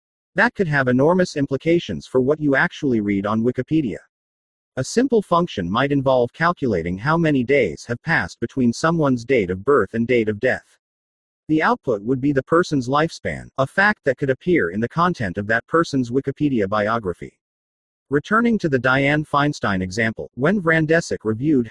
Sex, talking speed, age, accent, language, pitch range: male, 170 wpm, 40-59, American, English, 115-155 Hz